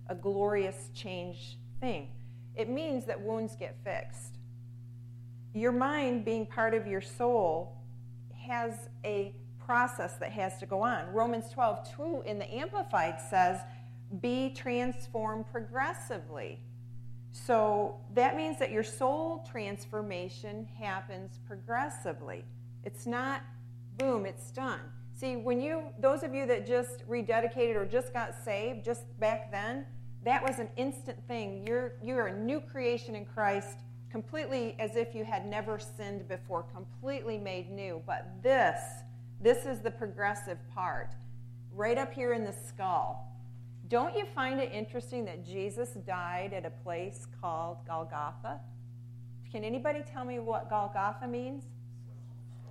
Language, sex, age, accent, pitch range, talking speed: English, female, 40-59, American, 120-195 Hz, 140 wpm